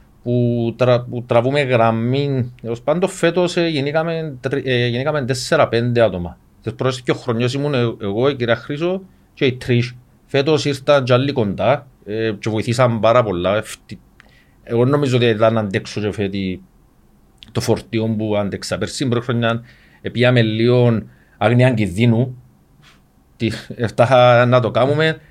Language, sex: Greek, male